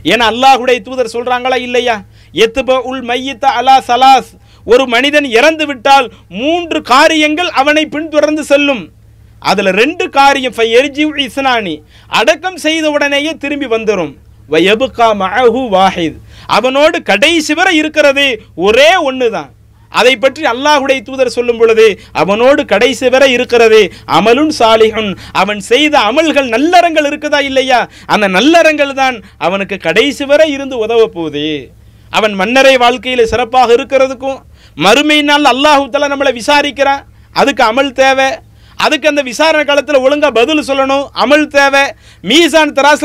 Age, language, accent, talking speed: 50-69, English, Indian, 120 wpm